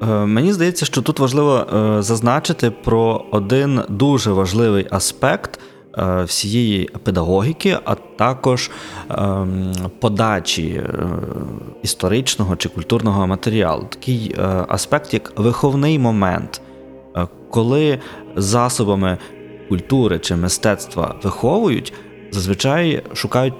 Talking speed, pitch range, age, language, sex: 85 wpm, 95-125 Hz, 20-39, Ukrainian, male